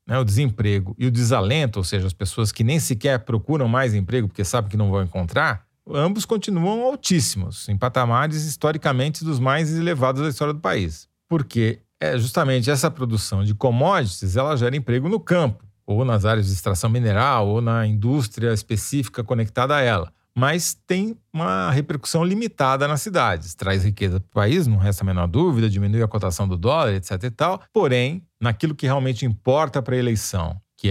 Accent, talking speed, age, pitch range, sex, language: Brazilian, 175 wpm, 40-59, 105-150 Hz, male, Portuguese